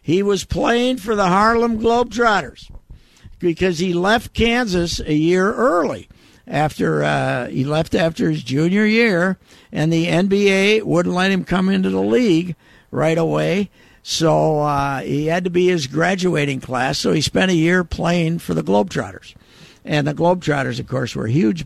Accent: American